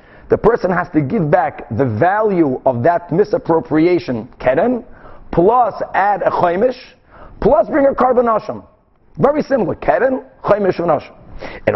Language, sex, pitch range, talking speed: English, male, 160-215 Hz, 135 wpm